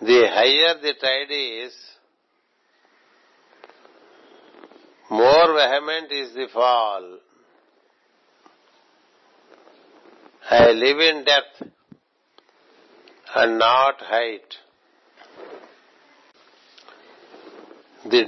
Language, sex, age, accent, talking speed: English, male, 60-79, Indian, 60 wpm